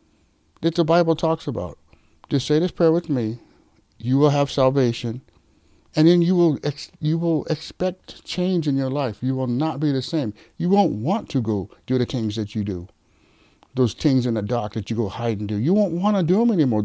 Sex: male